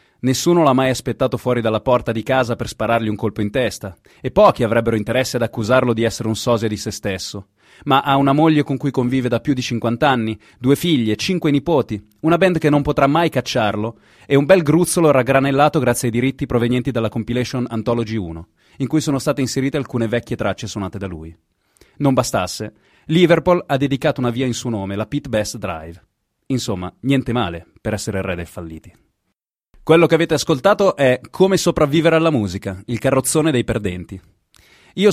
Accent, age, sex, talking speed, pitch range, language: native, 30-49, male, 190 wpm, 110-150 Hz, Italian